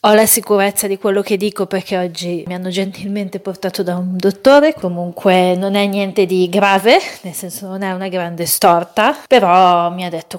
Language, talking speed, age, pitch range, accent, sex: Italian, 190 wpm, 30-49, 180-210 Hz, native, female